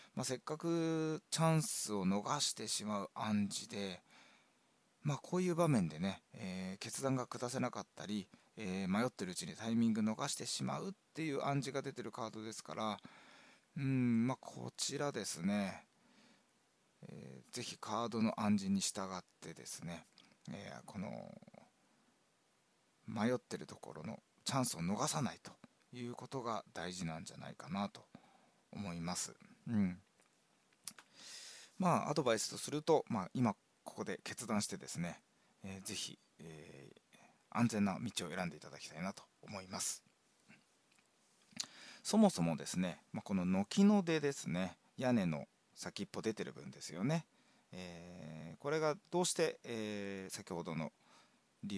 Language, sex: Japanese, male